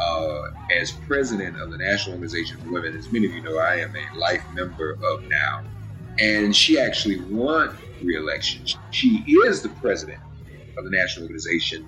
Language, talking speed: English, 170 wpm